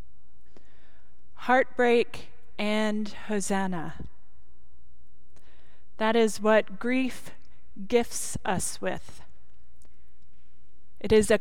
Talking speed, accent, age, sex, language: 70 wpm, American, 30-49, female, English